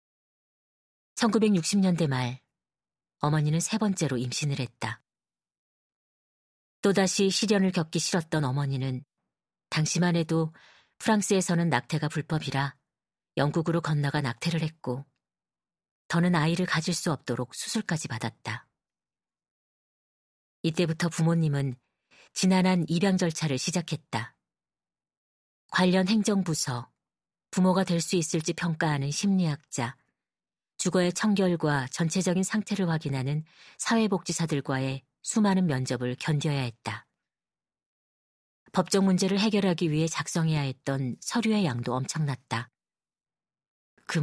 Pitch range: 140-185 Hz